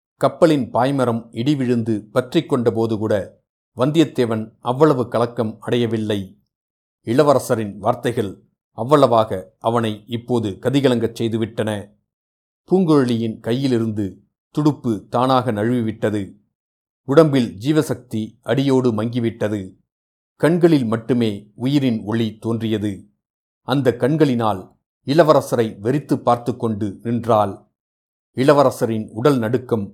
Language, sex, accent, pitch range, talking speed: Tamil, male, native, 110-140 Hz, 85 wpm